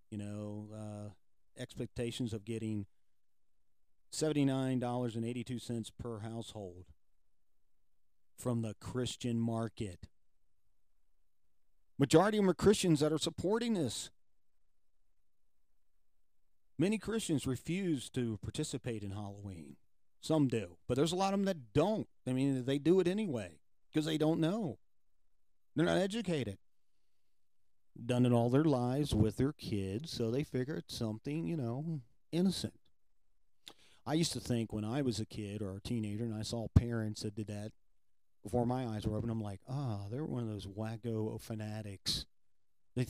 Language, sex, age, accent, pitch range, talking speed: English, male, 40-59, American, 105-135 Hz, 140 wpm